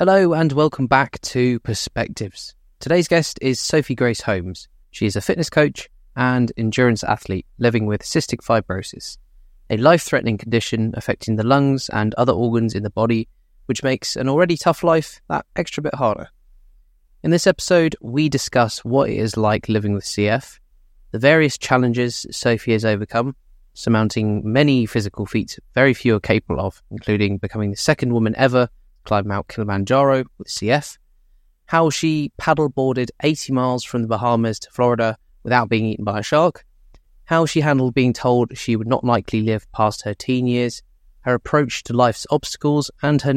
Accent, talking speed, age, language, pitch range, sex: British, 165 wpm, 20-39, English, 110-135 Hz, male